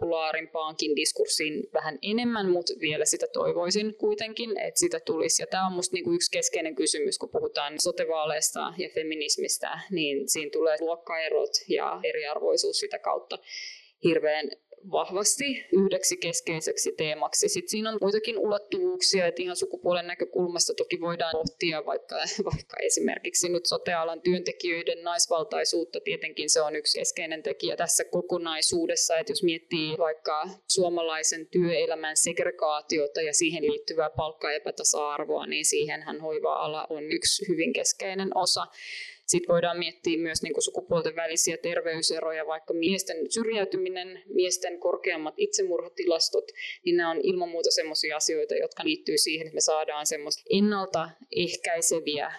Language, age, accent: Finnish, 20-39, native